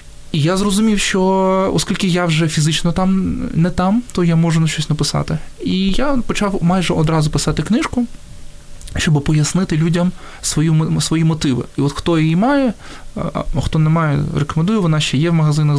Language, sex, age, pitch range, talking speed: Ukrainian, male, 20-39, 145-175 Hz, 165 wpm